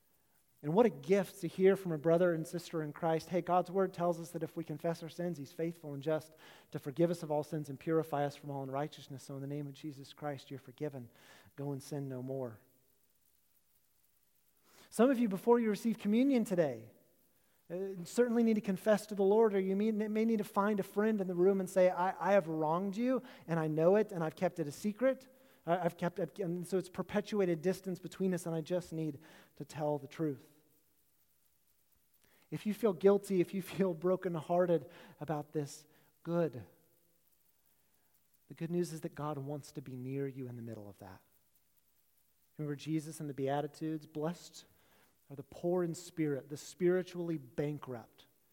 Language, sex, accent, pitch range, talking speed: English, male, American, 150-185 Hz, 195 wpm